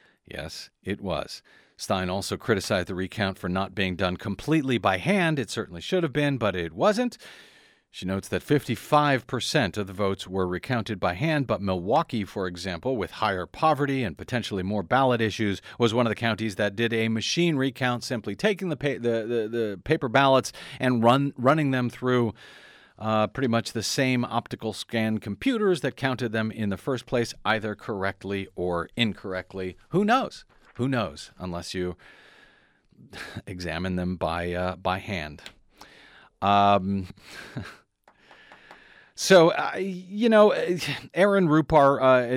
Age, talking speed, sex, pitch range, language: 50-69, 155 wpm, male, 100-140 Hz, English